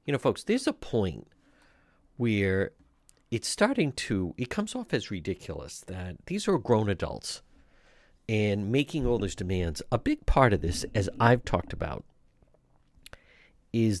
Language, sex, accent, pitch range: English, male, American, 95-135 Hz